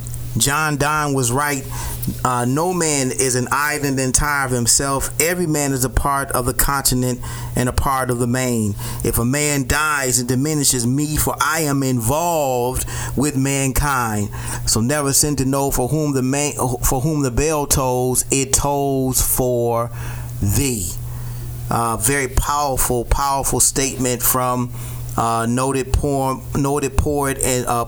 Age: 30-49